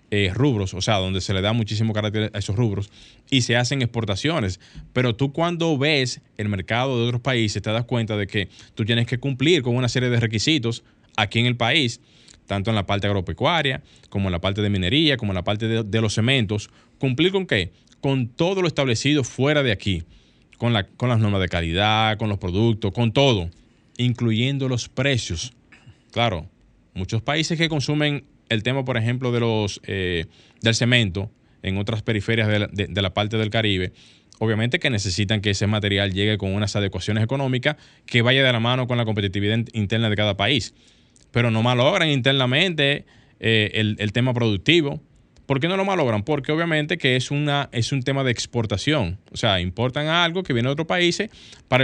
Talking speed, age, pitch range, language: 195 wpm, 20-39, 105-130 Hz, Spanish